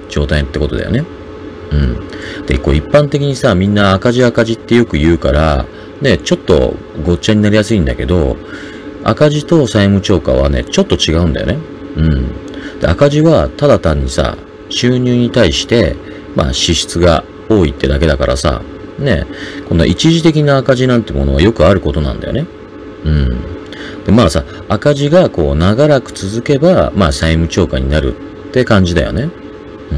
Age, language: 40-59, Japanese